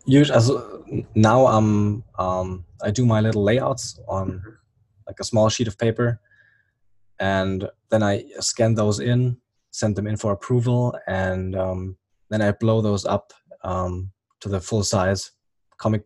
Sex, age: male, 20-39